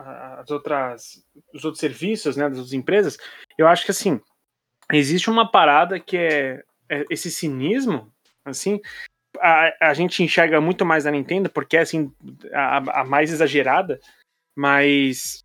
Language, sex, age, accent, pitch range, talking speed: Portuguese, male, 20-39, Brazilian, 145-190 Hz, 150 wpm